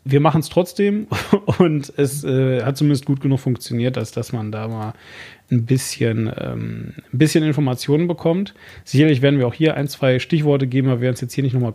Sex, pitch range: male, 125-145 Hz